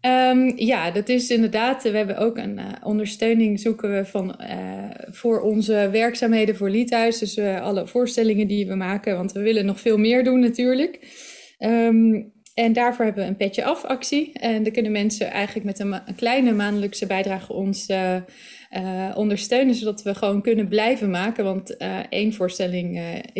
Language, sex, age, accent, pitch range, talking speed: Dutch, female, 20-39, Dutch, 190-225 Hz, 180 wpm